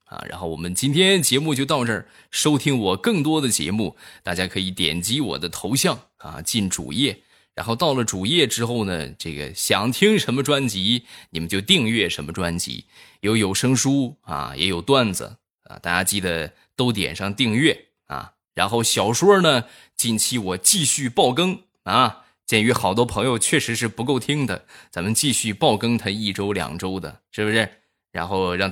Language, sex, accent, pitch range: Chinese, male, native, 90-125 Hz